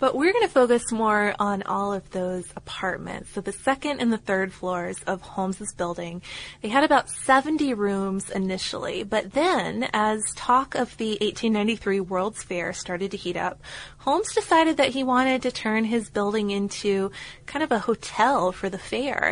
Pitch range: 195-240 Hz